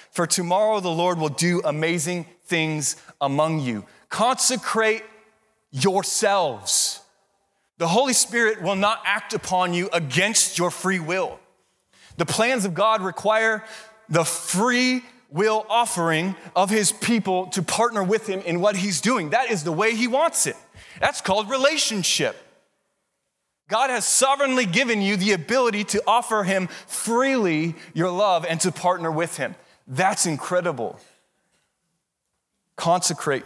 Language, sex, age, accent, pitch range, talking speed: English, male, 20-39, American, 130-210 Hz, 135 wpm